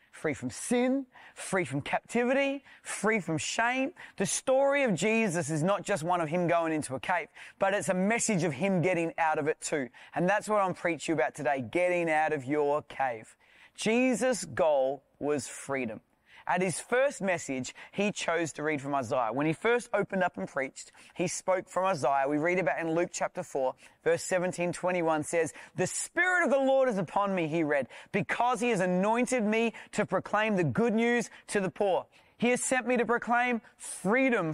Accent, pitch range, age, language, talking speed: Australian, 175-235 Hz, 30-49, English, 195 wpm